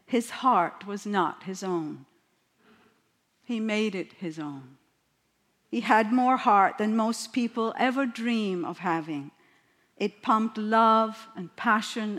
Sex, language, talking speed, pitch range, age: female, English, 135 wpm, 190-240 Hz, 60-79